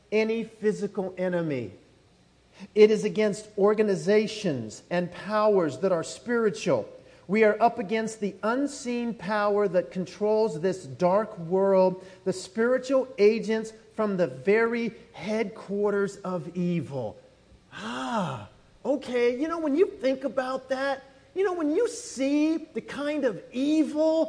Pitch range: 215-290 Hz